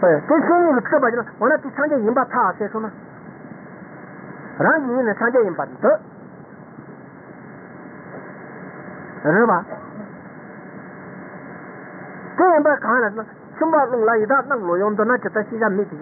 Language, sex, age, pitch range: Italian, male, 60-79, 205-280 Hz